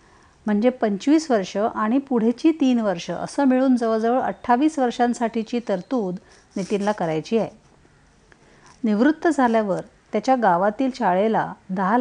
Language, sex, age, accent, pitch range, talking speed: Marathi, female, 50-69, native, 195-255 Hz, 110 wpm